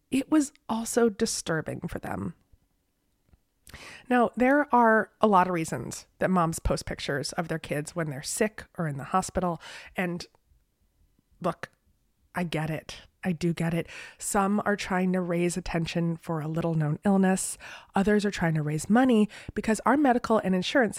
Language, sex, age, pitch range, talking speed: English, female, 20-39, 165-225 Hz, 165 wpm